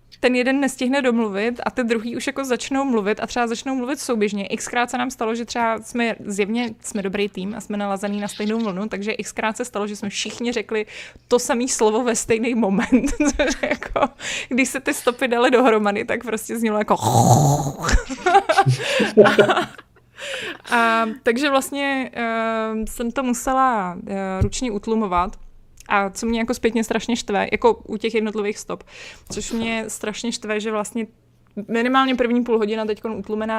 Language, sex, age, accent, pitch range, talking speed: Czech, female, 20-39, native, 210-245 Hz, 160 wpm